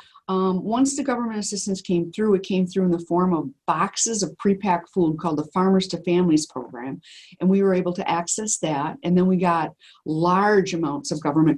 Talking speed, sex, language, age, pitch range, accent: 200 wpm, female, English, 50-69, 170-200 Hz, American